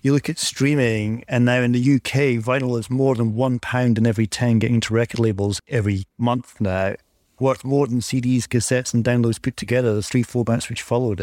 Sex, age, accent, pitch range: male, 40-59, British, 115-130 Hz